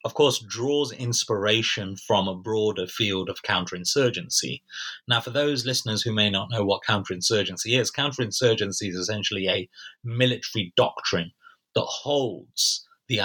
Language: English